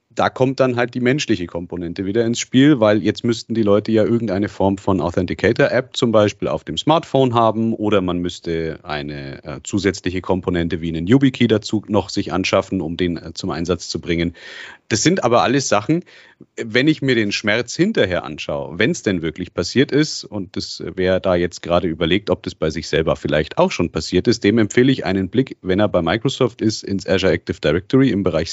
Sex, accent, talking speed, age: male, German, 205 wpm, 40-59